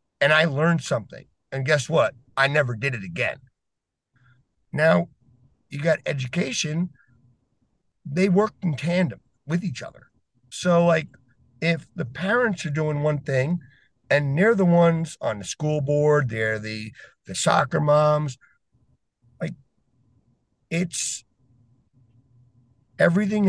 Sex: male